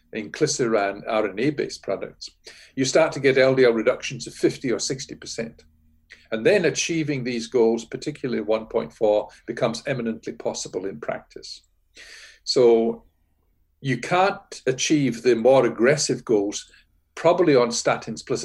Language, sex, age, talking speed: English, male, 50-69, 130 wpm